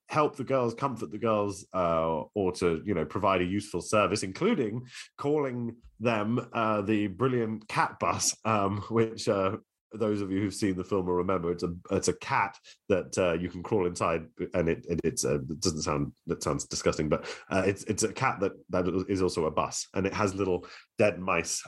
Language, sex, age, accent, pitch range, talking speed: English, male, 30-49, British, 85-110 Hz, 210 wpm